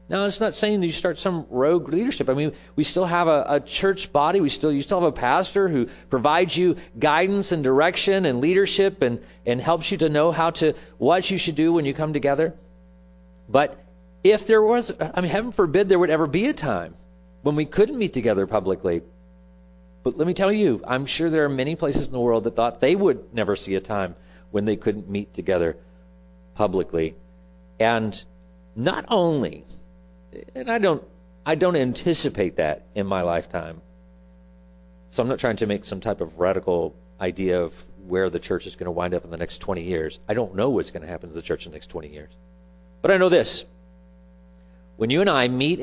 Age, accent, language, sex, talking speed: 40-59, American, English, male, 210 wpm